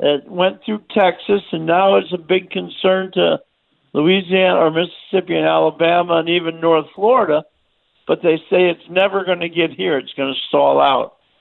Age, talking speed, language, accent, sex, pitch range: 50-69, 180 wpm, English, American, male, 140-190 Hz